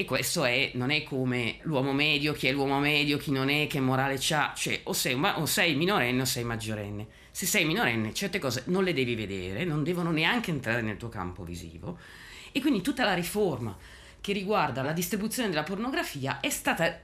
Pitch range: 155-195 Hz